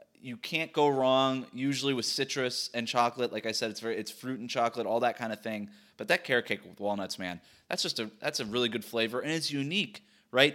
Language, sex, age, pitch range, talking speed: English, male, 20-39, 115-140 Hz, 240 wpm